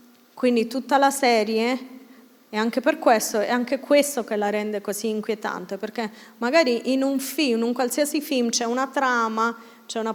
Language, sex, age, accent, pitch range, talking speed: Italian, female, 30-49, native, 235-315 Hz, 175 wpm